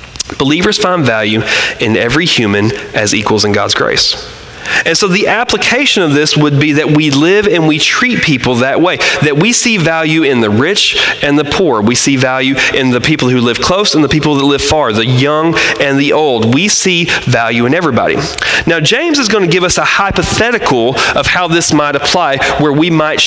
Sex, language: male, English